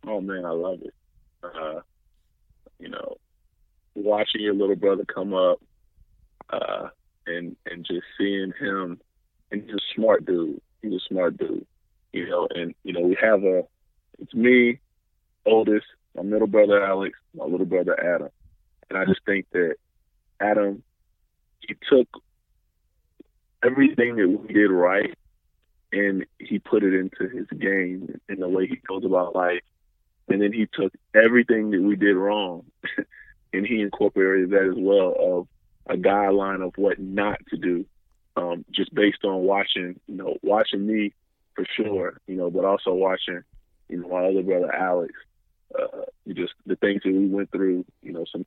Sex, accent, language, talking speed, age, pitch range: male, American, English, 160 wpm, 20-39, 95-105 Hz